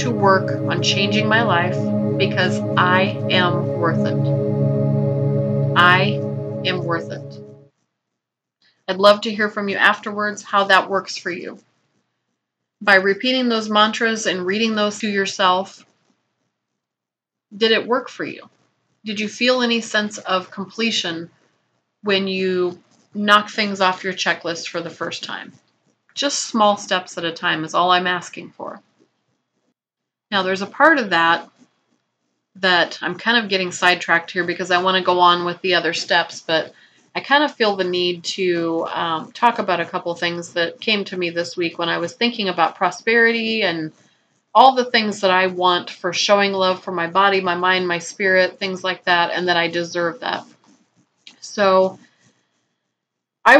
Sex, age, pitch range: female, 30-49, 170-210 Hz